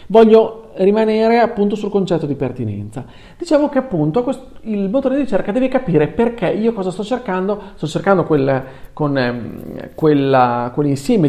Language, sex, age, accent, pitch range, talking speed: Italian, male, 40-59, native, 140-205 Hz, 130 wpm